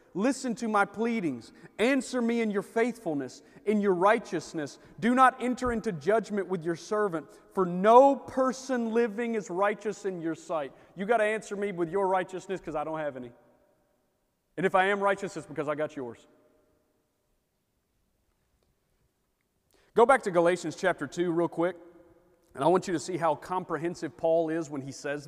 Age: 40-59